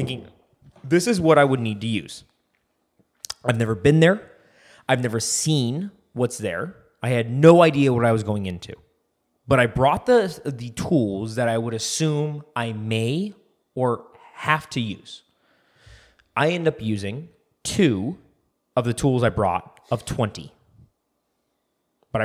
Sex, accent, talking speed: male, American, 150 wpm